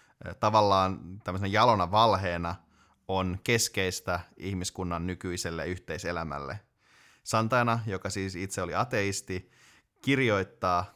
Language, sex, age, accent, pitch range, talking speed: Finnish, male, 20-39, native, 90-105 Hz, 90 wpm